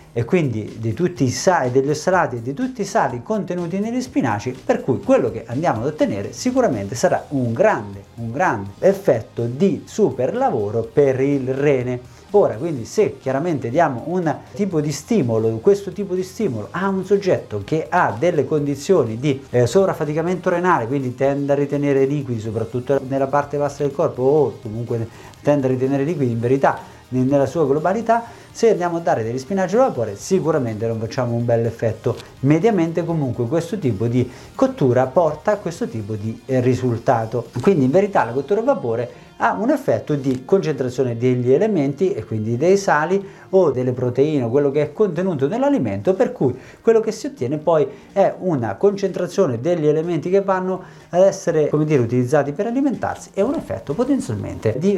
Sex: male